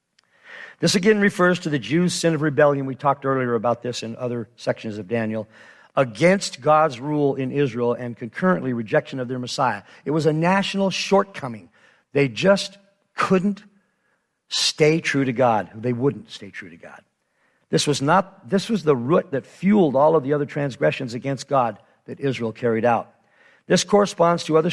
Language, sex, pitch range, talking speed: English, male, 125-170 Hz, 170 wpm